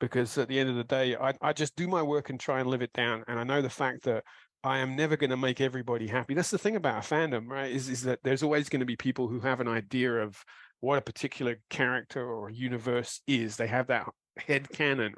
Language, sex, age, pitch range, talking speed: English, male, 40-59, 120-145 Hz, 260 wpm